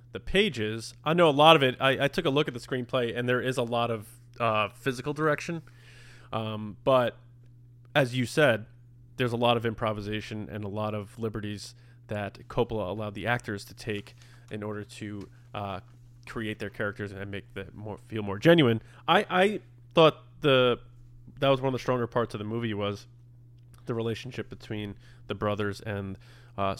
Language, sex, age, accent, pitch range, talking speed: English, male, 20-39, American, 110-125 Hz, 185 wpm